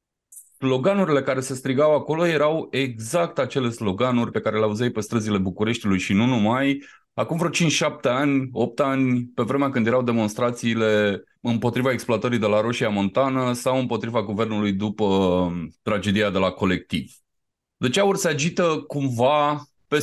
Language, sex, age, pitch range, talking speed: Romanian, male, 30-49, 110-140 Hz, 150 wpm